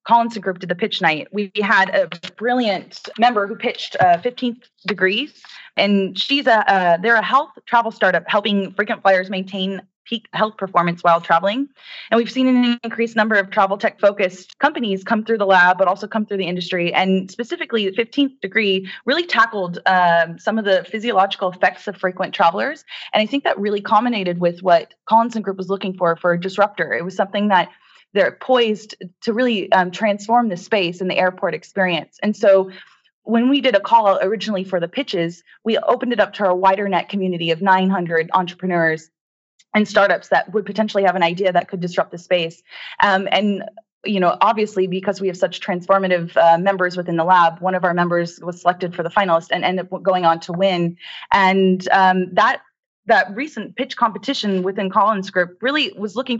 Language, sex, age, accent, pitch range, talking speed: English, female, 20-39, American, 185-225 Hz, 195 wpm